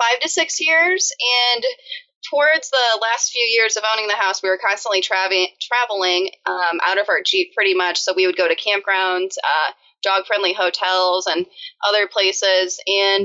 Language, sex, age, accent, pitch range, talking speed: English, female, 20-39, American, 190-260 Hz, 170 wpm